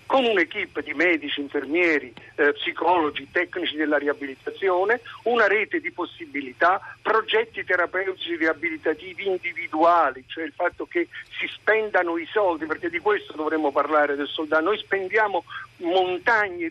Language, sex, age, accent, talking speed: Italian, male, 50-69, native, 130 wpm